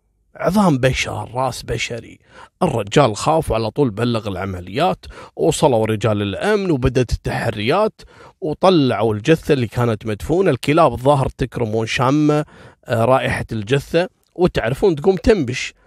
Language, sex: Arabic, male